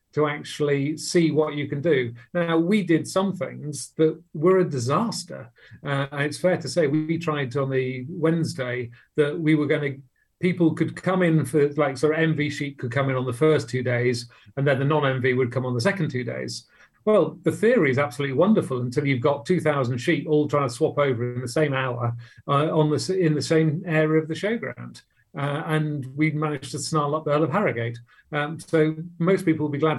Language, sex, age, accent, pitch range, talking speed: English, male, 40-59, British, 130-160 Hz, 220 wpm